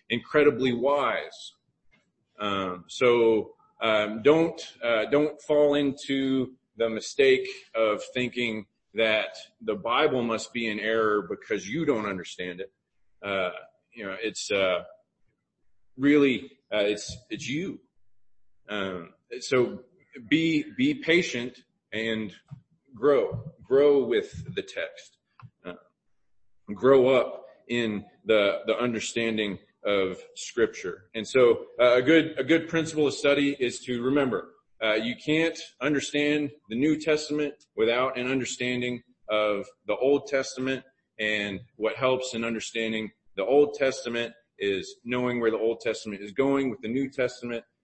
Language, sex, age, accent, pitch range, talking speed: English, male, 40-59, American, 115-150 Hz, 130 wpm